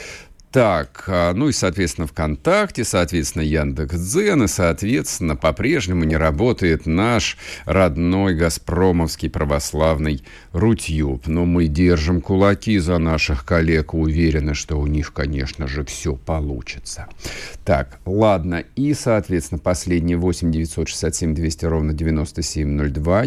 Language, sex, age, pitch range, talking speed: Russian, male, 50-69, 75-90 Hz, 110 wpm